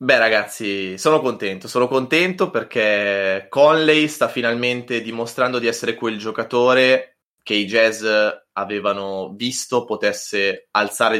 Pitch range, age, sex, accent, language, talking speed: 105-125 Hz, 20-39, male, native, Italian, 120 wpm